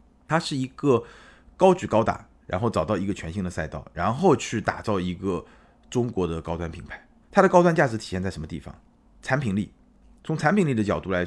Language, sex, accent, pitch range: Chinese, male, native, 90-115 Hz